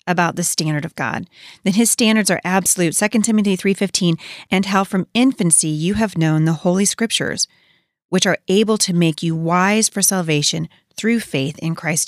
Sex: female